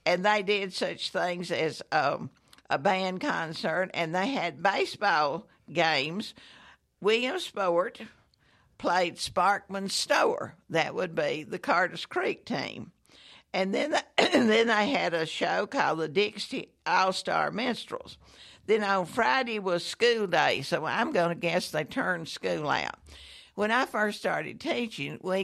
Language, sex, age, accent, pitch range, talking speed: English, female, 60-79, American, 165-205 Hz, 145 wpm